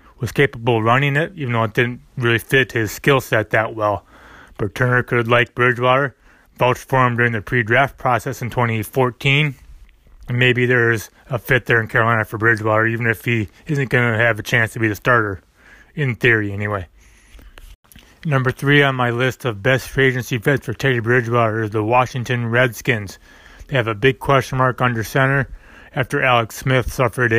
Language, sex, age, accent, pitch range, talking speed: English, male, 20-39, American, 115-130 Hz, 185 wpm